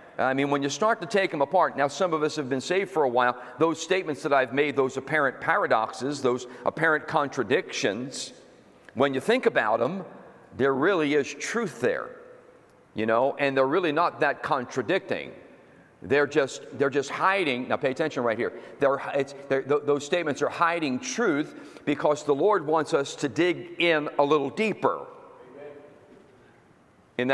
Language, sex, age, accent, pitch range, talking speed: English, male, 50-69, American, 140-190 Hz, 175 wpm